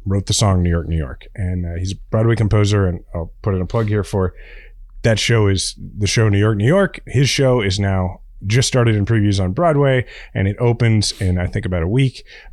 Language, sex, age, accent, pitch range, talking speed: English, male, 30-49, American, 95-120 Hz, 235 wpm